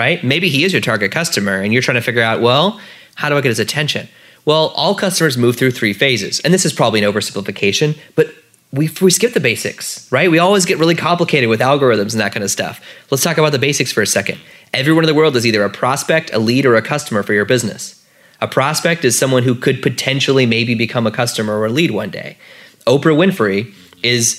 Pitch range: 110-150 Hz